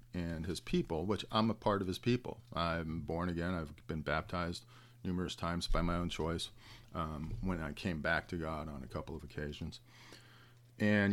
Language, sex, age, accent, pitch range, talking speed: English, male, 40-59, American, 85-120 Hz, 190 wpm